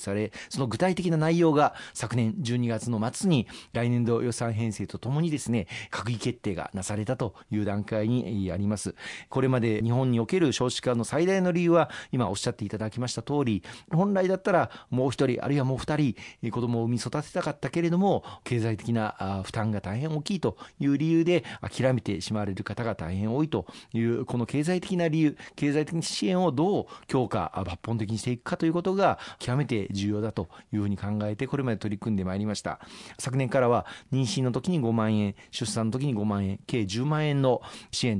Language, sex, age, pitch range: Japanese, male, 40-59, 110-140 Hz